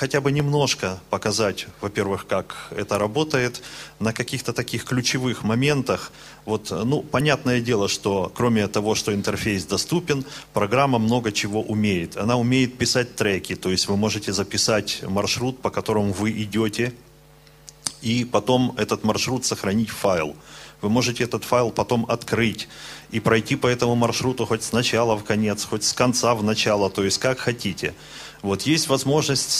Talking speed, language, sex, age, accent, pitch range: 155 wpm, Russian, male, 30-49, native, 100-125 Hz